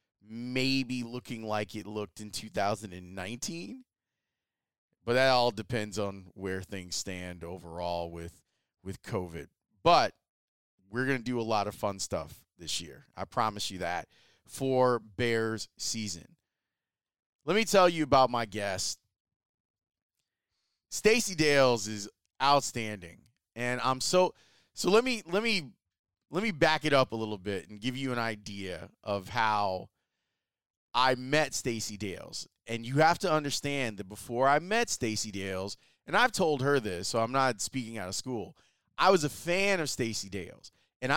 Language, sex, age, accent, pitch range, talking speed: English, male, 30-49, American, 105-145 Hz, 155 wpm